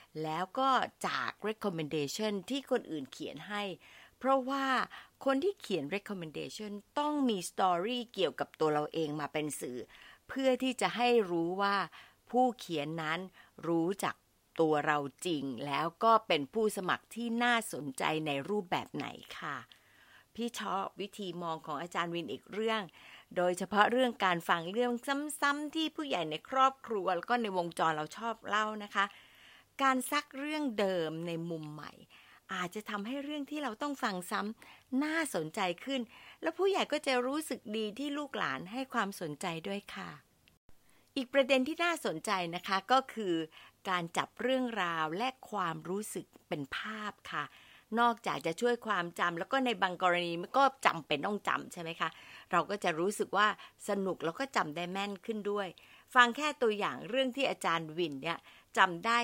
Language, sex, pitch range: Thai, female, 170-250 Hz